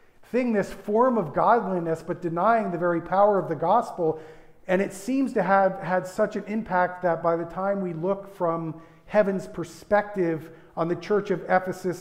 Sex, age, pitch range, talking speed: male, 40-59, 150-185 Hz, 180 wpm